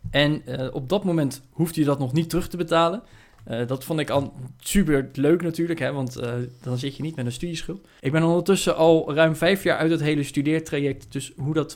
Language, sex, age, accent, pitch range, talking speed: Dutch, male, 20-39, Dutch, 130-160 Hz, 225 wpm